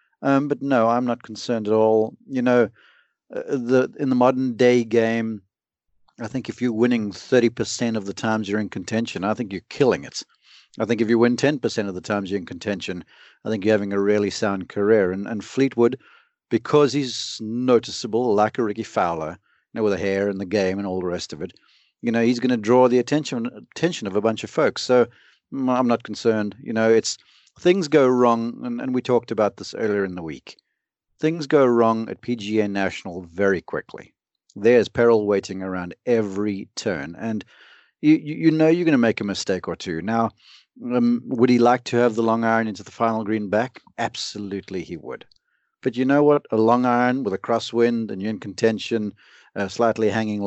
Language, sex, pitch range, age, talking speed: English, male, 105-125 Hz, 40-59, 205 wpm